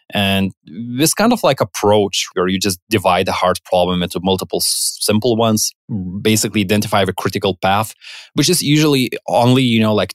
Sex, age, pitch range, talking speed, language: male, 20-39, 100-125 Hz, 175 wpm, English